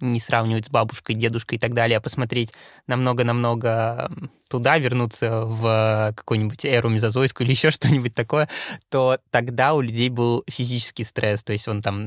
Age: 20-39